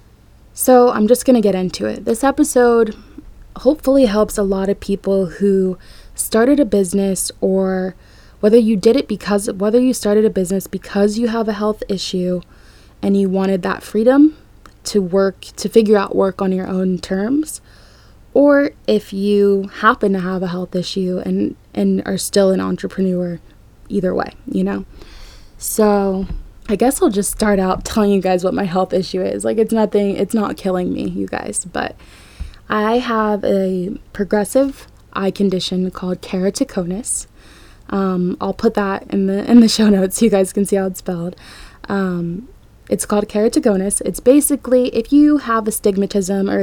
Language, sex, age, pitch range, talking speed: English, female, 20-39, 185-220 Hz, 170 wpm